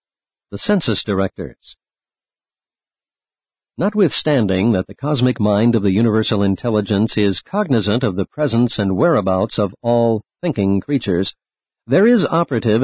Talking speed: 120 wpm